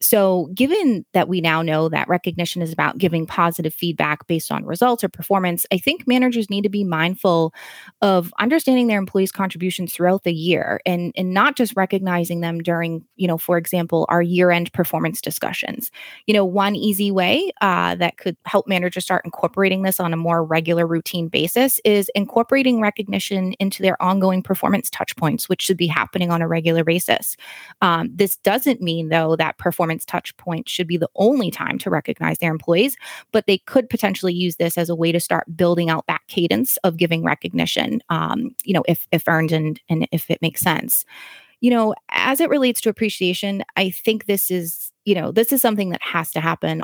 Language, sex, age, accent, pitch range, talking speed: English, female, 20-39, American, 170-205 Hz, 195 wpm